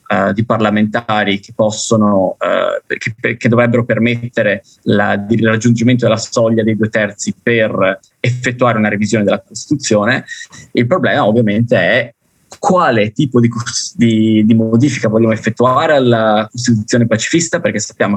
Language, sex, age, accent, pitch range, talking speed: Italian, male, 20-39, native, 110-120 Hz, 130 wpm